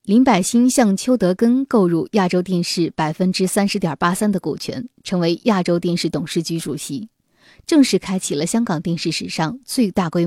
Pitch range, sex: 170-220 Hz, female